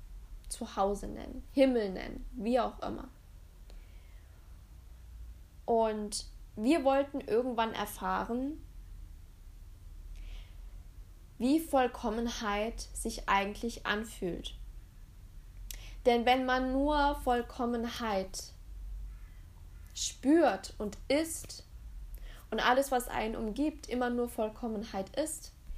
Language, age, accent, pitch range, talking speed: German, 10-29, German, 195-250 Hz, 80 wpm